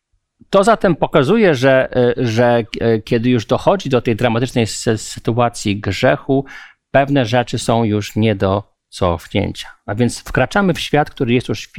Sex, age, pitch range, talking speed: male, 50-69, 110-140 Hz, 145 wpm